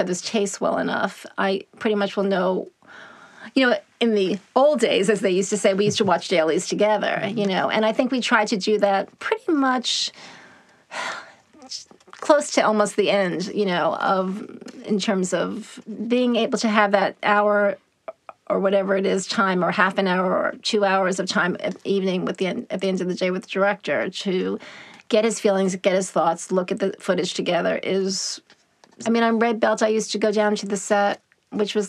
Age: 30-49